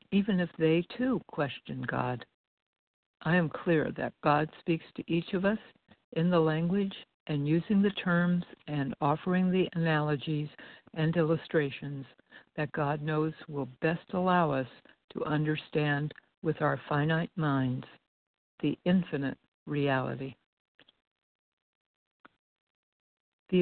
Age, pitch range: 60-79, 145-175 Hz